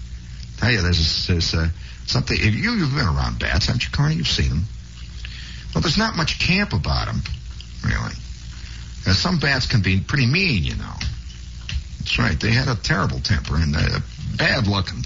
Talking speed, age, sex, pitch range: 170 wpm, 60-79, male, 80-120 Hz